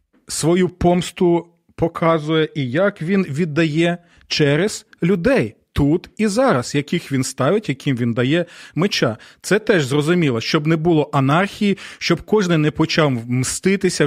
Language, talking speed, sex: Ukrainian, 130 wpm, male